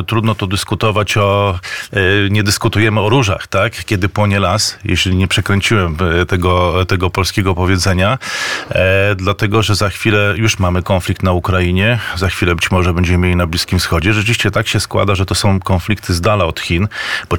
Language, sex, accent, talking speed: Polish, male, native, 175 wpm